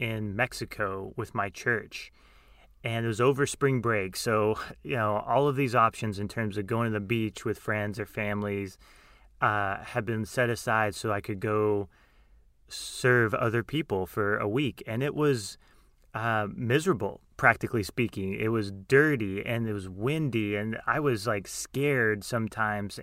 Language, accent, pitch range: English, American, 105-125 Hz